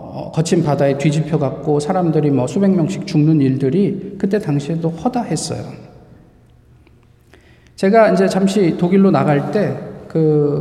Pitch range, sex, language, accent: 145-180 Hz, male, Korean, native